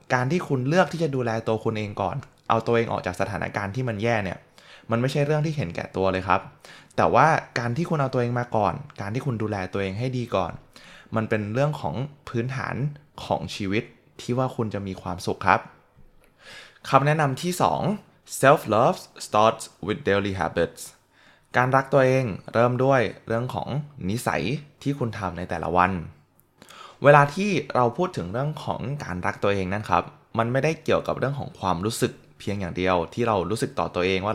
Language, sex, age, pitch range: Thai, male, 20-39, 95-135 Hz